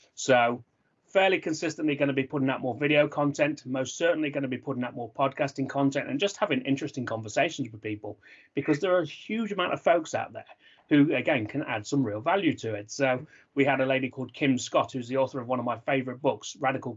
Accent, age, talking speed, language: British, 30-49, 230 wpm, English